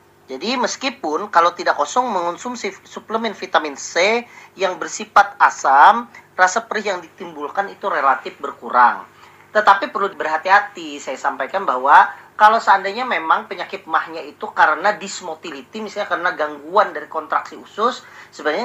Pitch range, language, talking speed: 155-205 Hz, Indonesian, 130 wpm